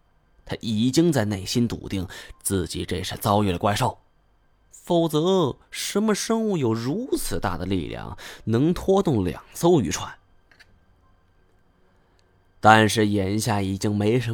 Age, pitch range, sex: 20-39, 95-135 Hz, male